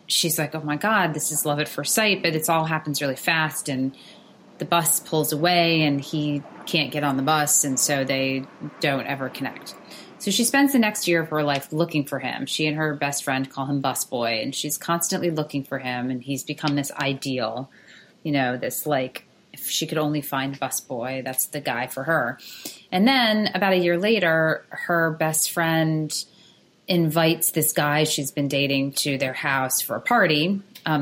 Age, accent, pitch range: 30-49, American, 135-170 Hz